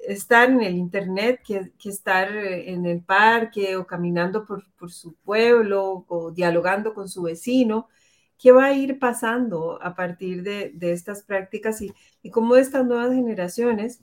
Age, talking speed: 40-59, 165 wpm